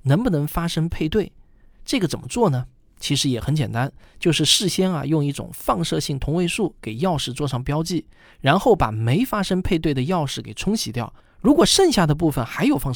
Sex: male